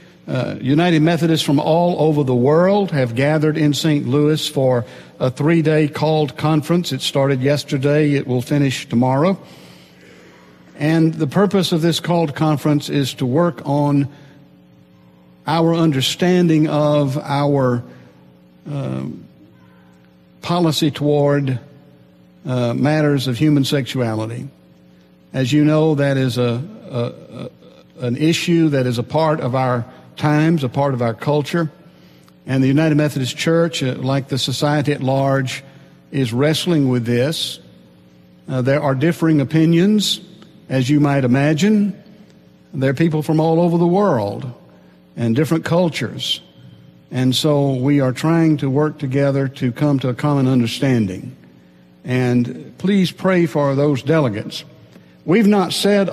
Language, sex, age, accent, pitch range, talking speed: English, male, 60-79, American, 125-155 Hz, 135 wpm